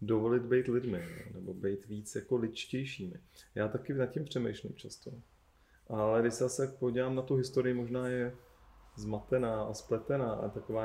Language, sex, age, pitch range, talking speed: Czech, male, 30-49, 95-125 Hz, 160 wpm